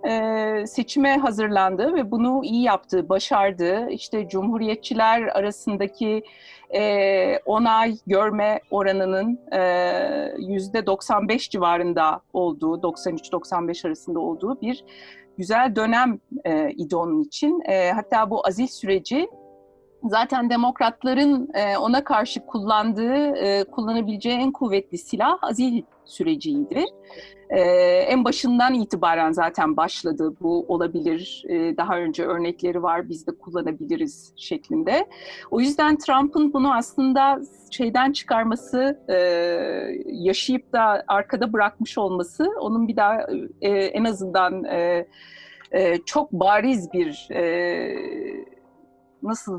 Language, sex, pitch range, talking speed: Turkish, female, 185-265 Hz, 100 wpm